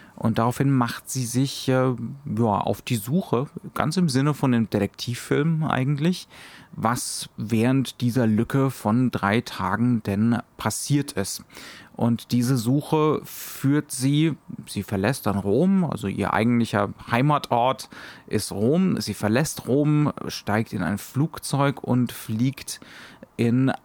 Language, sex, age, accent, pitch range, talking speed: German, male, 30-49, German, 110-140 Hz, 130 wpm